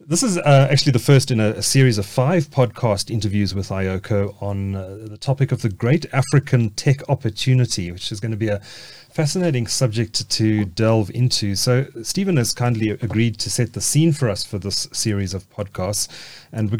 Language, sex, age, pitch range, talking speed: English, male, 30-49, 105-130 Hz, 195 wpm